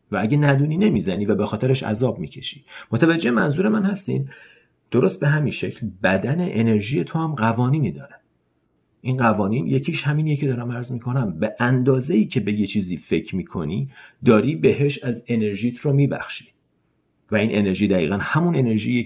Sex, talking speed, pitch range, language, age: male, 160 wpm, 110-150 Hz, Persian, 40-59